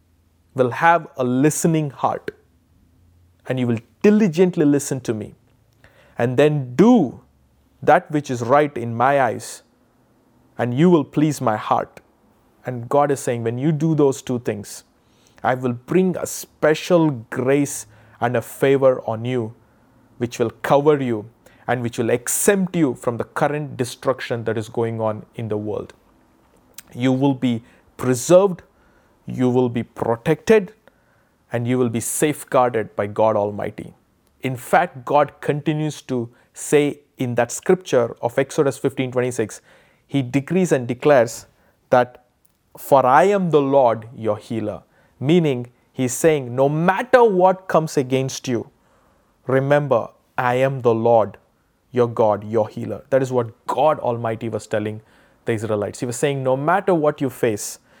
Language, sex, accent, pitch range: English, male, Indian, 115-145 Hz